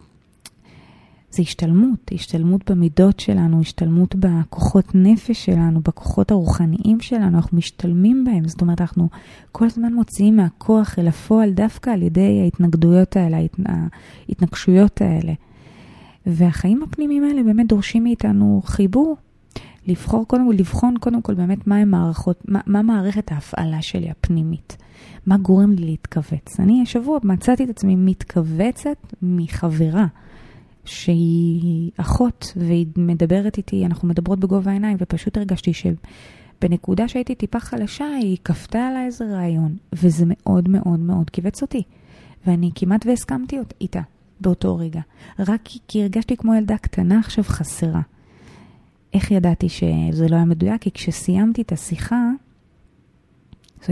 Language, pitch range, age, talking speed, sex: Hebrew, 170-215 Hz, 30-49, 130 wpm, female